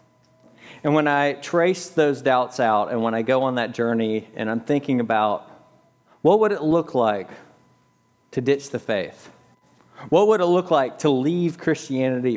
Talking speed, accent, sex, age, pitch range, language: 170 wpm, American, male, 40-59, 110-145 Hz, English